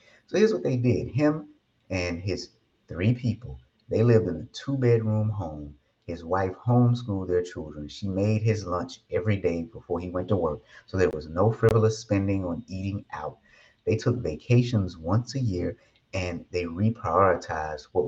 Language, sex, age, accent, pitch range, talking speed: English, male, 30-49, American, 90-115 Hz, 170 wpm